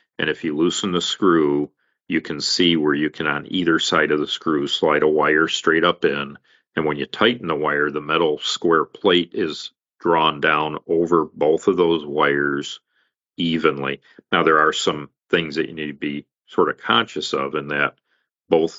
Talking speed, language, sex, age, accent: 190 wpm, English, male, 40-59, American